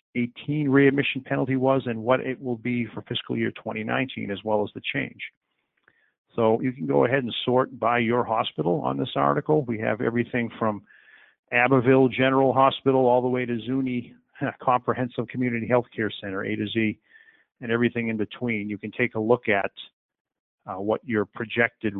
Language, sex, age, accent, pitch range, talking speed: English, male, 40-59, American, 105-125 Hz, 175 wpm